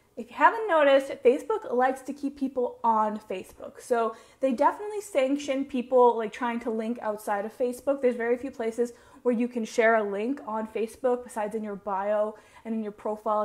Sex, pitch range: female, 225-290 Hz